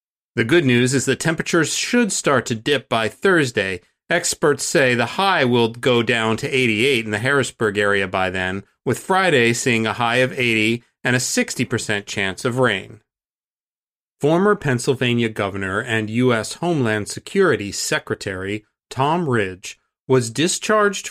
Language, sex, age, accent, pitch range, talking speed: English, male, 40-59, American, 110-160 Hz, 150 wpm